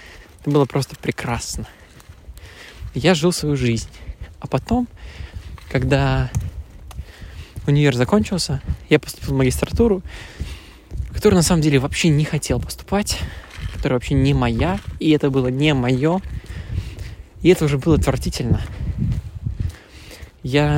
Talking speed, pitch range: 115 wpm, 95-155 Hz